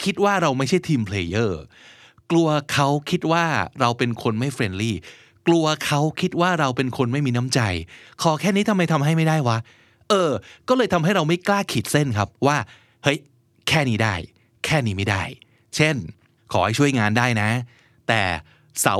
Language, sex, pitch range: Thai, male, 115-155 Hz